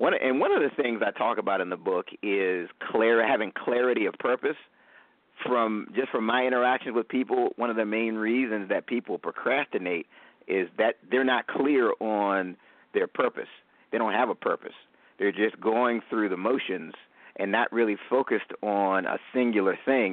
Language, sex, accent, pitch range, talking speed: English, male, American, 100-120 Hz, 180 wpm